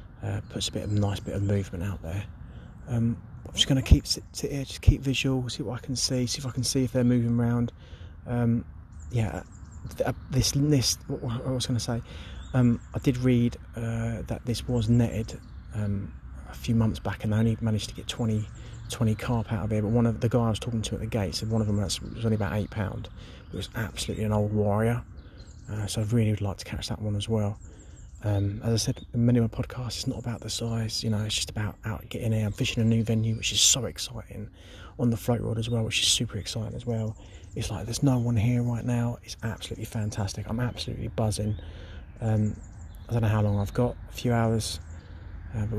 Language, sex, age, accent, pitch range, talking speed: English, male, 30-49, British, 100-120 Hz, 240 wpm